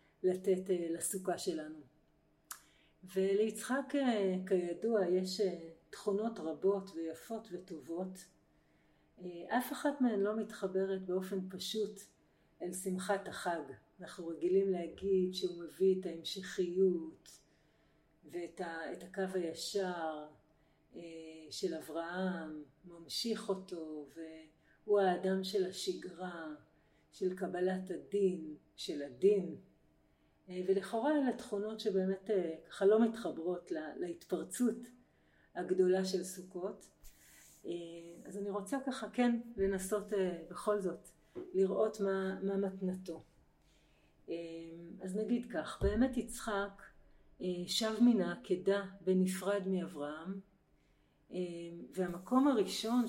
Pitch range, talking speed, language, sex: 170-200 Hz, 90 wpm, Hebrew, female